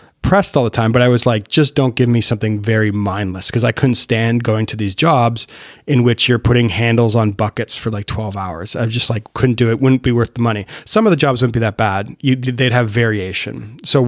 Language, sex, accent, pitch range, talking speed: English, male, American, 105-125 Hz, 245 wpm